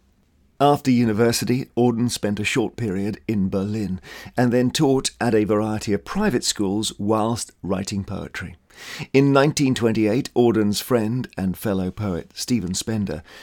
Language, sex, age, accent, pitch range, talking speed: English, male, 50-69, British, 90-110 Hz, 135 wpm